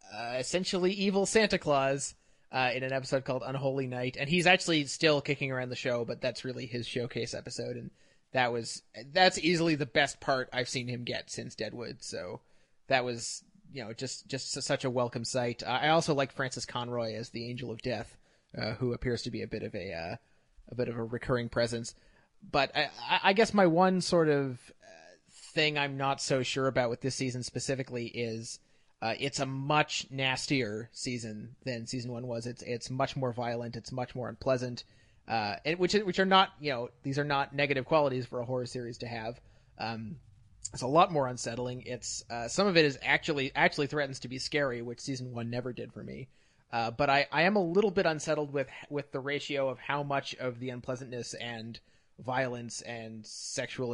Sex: male